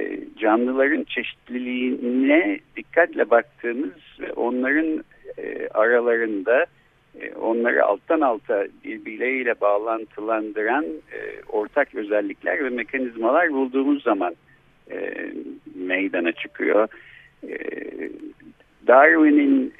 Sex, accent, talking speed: male, native, 75 wpm